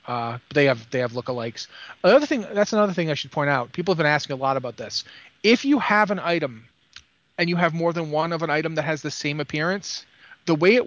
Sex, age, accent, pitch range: male, 30-49, American, 135-165 Hz